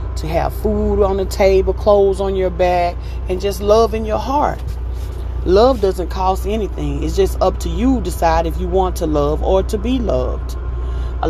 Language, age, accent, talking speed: English, 30-49, American, 190 wpm